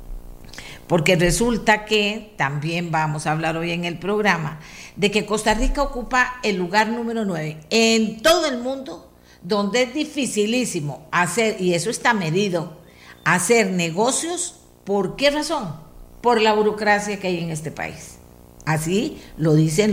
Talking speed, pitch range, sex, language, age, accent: 145 wpm, 155-215 Hz, female, Spanish, 50-69, American